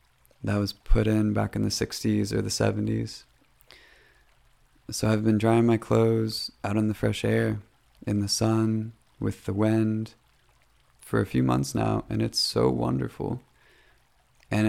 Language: English